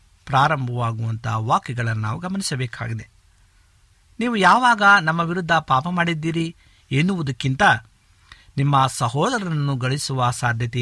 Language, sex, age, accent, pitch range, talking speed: Kannada, male, 50-69, native, 115-160 Hz, 85 wpm